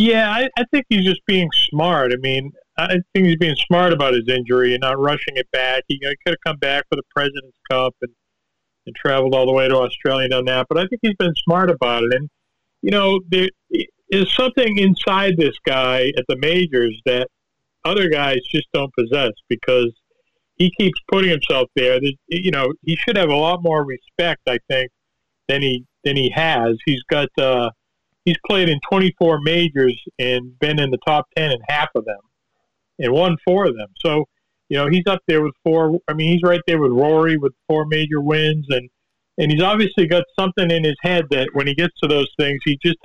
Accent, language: American, English